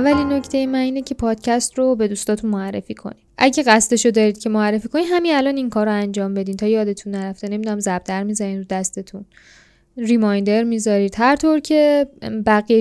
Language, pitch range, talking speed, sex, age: Persian, 210-260 Hz, 185 wpm, female, 10-29